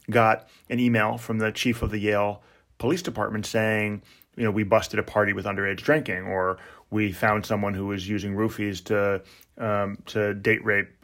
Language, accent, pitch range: English, American, 105-135 Hz